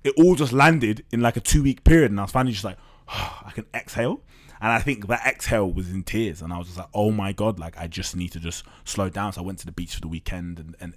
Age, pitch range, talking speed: 20-39, 100-135 Hz, 295 wpm